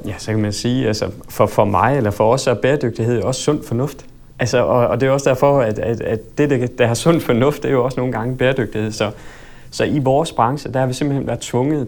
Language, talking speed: Danish, 260 wpm